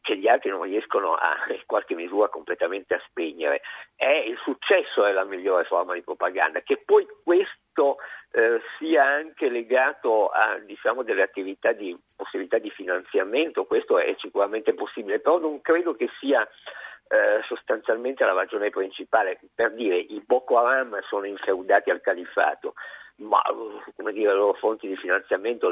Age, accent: 50-69, native